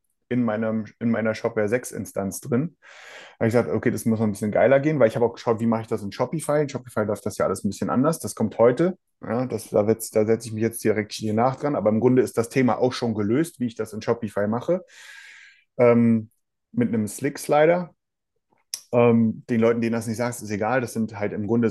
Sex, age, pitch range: male, 30-49, 105-125 Hz